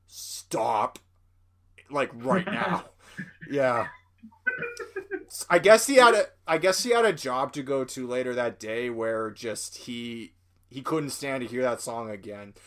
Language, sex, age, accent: English, male, 20-39, American